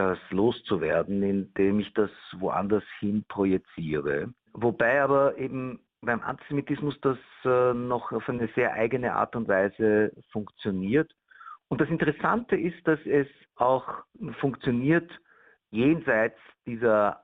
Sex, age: male, 50-69